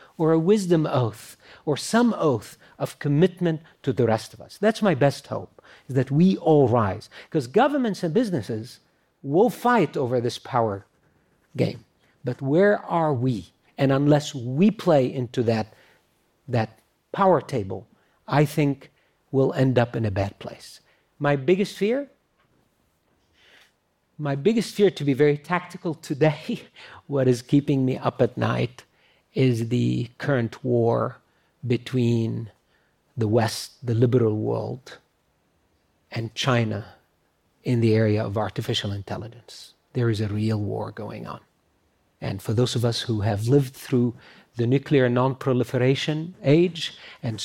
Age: 50-69